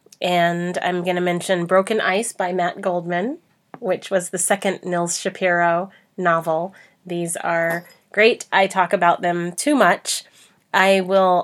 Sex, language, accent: female, English, American